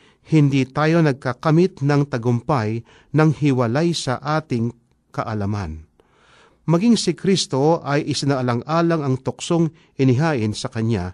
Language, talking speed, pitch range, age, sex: Filipino, 110 wpm, 125-165 Hz, 50-69, male